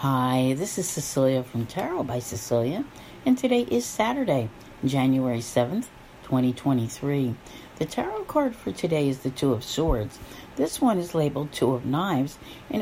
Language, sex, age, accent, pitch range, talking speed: English, female, 50-69, American, 130-165 Hz, 155 wpm